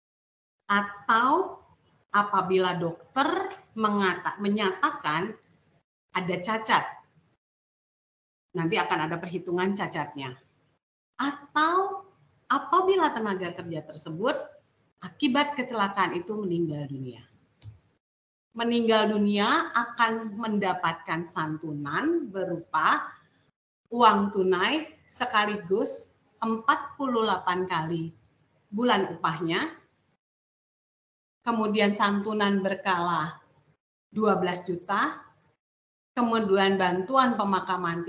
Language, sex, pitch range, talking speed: Indonesian, female, 175-235 Hz, 70 wpm